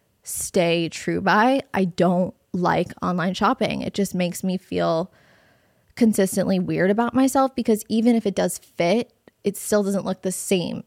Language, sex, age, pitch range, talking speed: English, female, 20-39, 175-205 Hz, 160 wpm